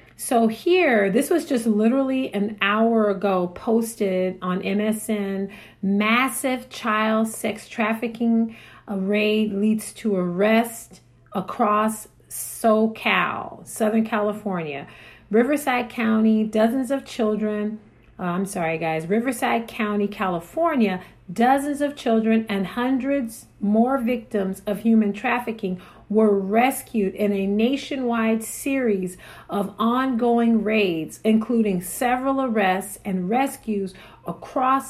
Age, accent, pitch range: 40-59, American, 205-245 Hz